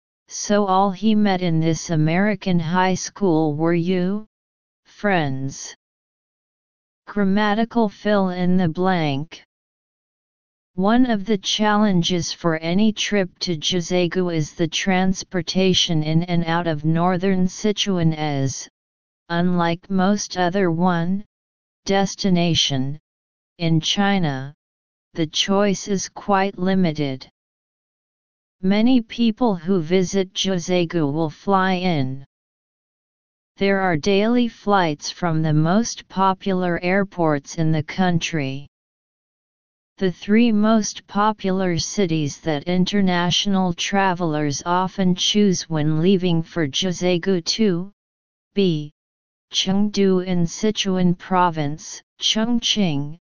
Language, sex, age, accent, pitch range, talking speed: English, female, 40-59, American, 165-195 Hz, 100 wpm